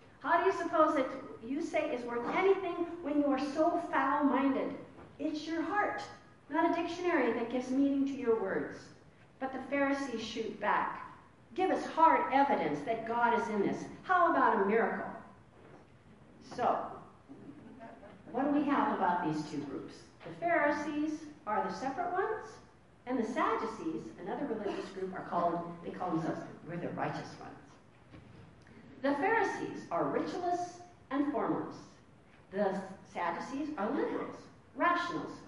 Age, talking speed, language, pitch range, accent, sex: 50-69, 145 wpm, English, 235-335 Hz, American, female